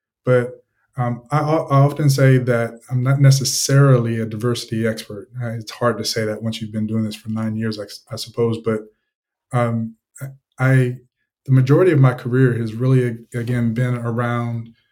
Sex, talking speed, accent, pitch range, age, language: male, 170 wpm, American, 115-125 Hz, 20-39, English